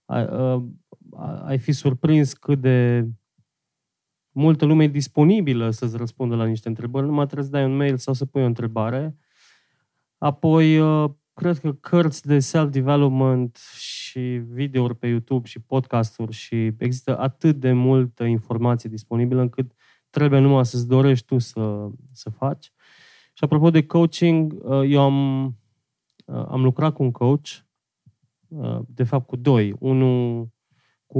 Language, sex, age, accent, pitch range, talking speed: Romanian, male, 20-39, native, 120-140 Hz, 135 wpm